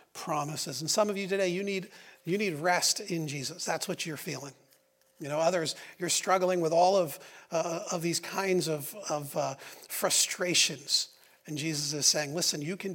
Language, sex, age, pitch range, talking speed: English, male, 40-59, 155-185 Hz, 185 wpm